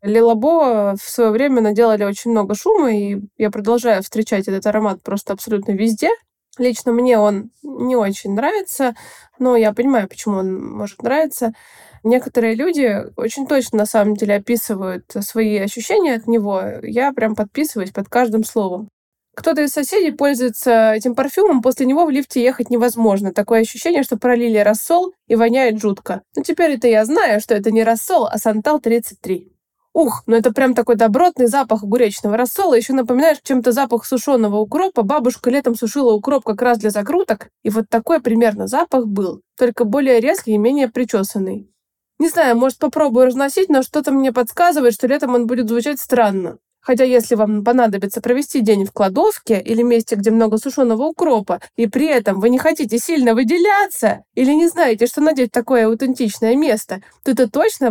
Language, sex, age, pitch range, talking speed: Russian, female, 20-39, 220-270 Hz, 170 wpm